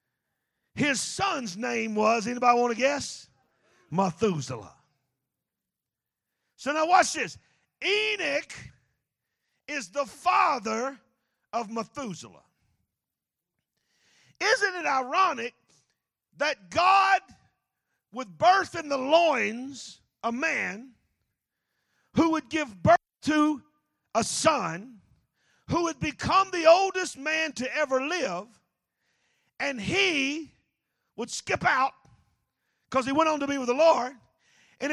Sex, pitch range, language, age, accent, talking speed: male, 235-335 Hz, English, 50-69, American, 105 wpm